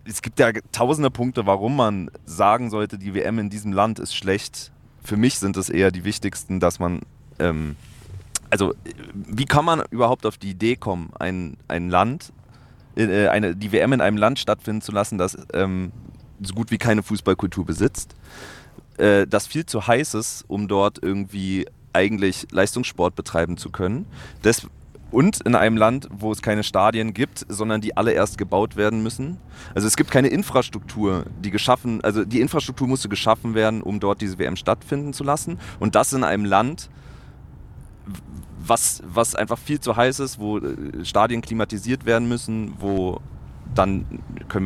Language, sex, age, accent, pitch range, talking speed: German, male, 30-49, German, 95-115 Hz, 170 wpm